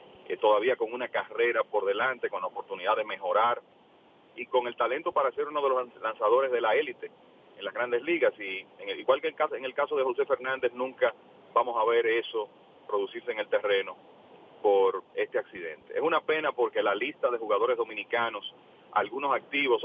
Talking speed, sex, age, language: 180 wpm, male, 40-59, English